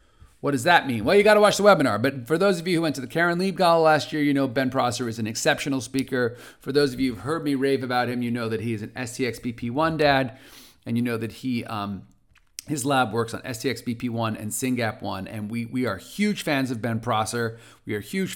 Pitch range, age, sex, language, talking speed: 115-155 Hz, 40-59, male, English, 250 wpm